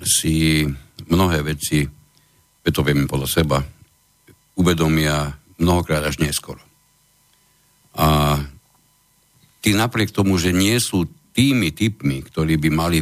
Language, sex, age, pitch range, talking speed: Slovak, male, 60-79, 75-105 Hz, 110 wpm